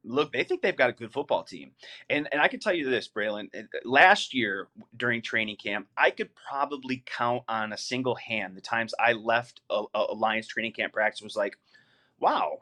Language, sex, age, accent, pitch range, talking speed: English, male, 30-49, American, 115-135 Hz, 200 wpm